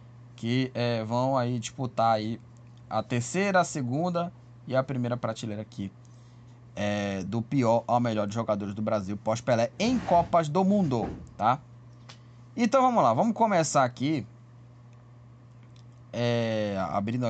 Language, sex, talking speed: Portuguese, male, 120 wpm